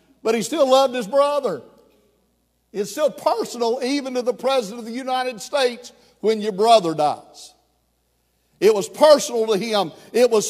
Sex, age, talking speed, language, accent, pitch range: male, 60-79, 160 wpm, English, American, 210-255 Hz